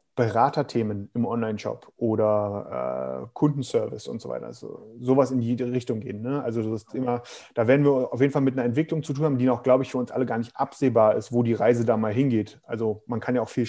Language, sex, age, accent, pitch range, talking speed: German, male, 30-49, German, 120-145 Hz, 240 wpm